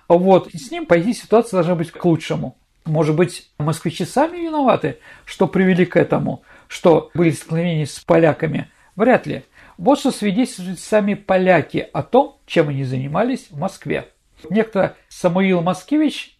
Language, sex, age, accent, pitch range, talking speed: Russian, male, 50-69, native, 185-260 Hz, 155 wpm